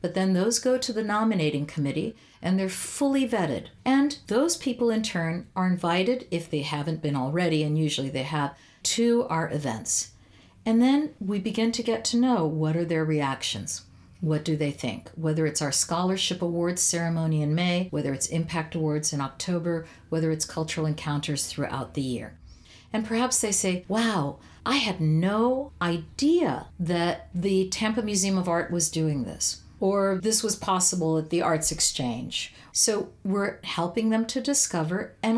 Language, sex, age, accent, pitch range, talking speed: English, female, 50-69, American, 150-210 Hz, 170 wpm